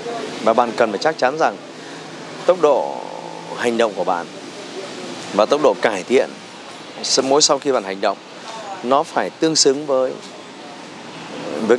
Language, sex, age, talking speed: Vietnamese, male, 20-39, 155 wpm